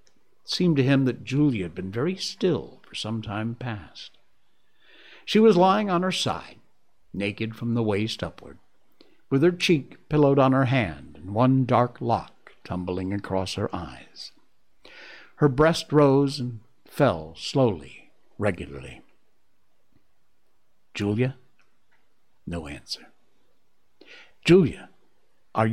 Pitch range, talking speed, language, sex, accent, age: 110-145 Hz, 120 wpm, English, male, American, 60-79